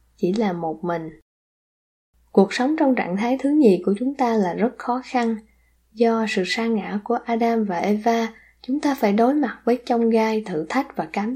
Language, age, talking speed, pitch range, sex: Vietnamese, 10-29, 200 wpm, 185-235 Hz, female